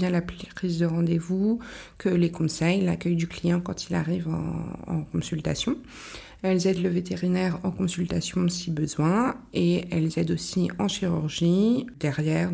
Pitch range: 160-185 Hz